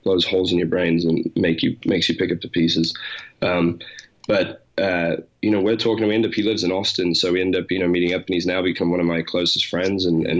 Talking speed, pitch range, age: 270 wpm, 85-95 Hz, 20-39